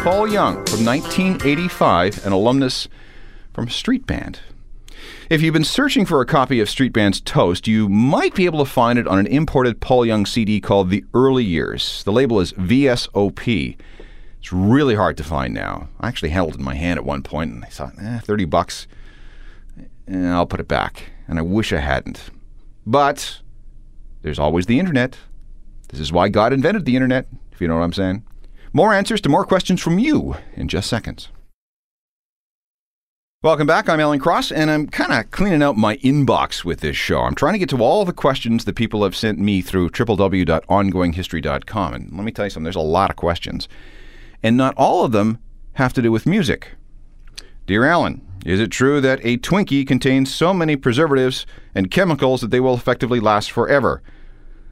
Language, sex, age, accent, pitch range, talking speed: English, male, 40-59, American, 95-135 Hz, 190 wpm